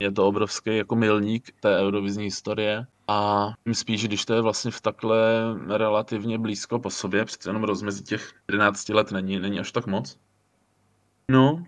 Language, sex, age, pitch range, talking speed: Czech, male, 20-39, 100-115 Hz, 160 wpm